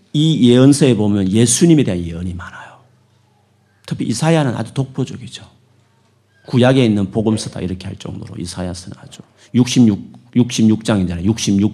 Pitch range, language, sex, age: 95-125 Hz, Korean, male, 40-59